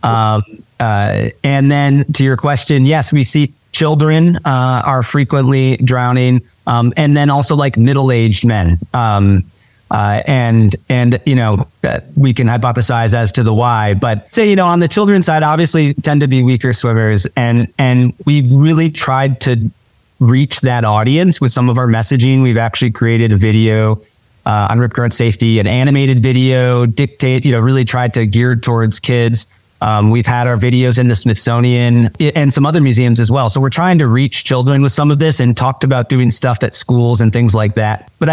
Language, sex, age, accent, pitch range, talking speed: English, male, 30-49, American, 115-140 Hz, 190 wpm